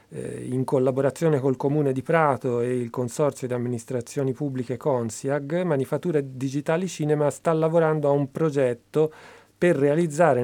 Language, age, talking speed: Italian, 40-59, 130 wpm